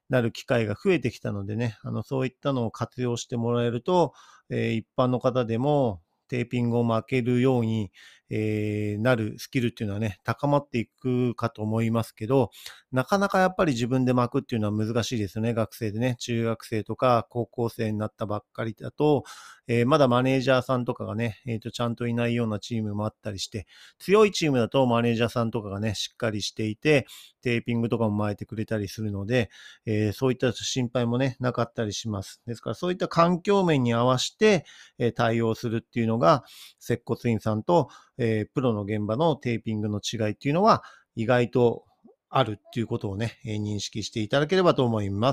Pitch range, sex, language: 110-135 Hz, male, Japanese